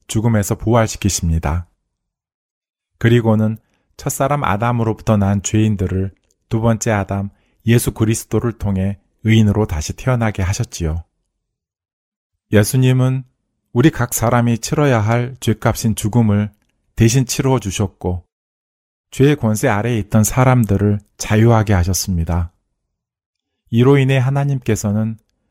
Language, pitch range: Korean, 95-120 Hz